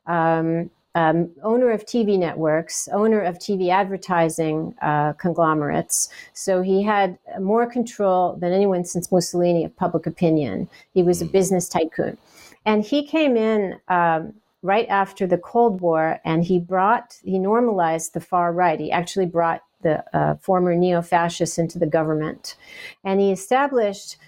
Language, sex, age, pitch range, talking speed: English, female, 50-69, 170-200 Hz, 150 wpm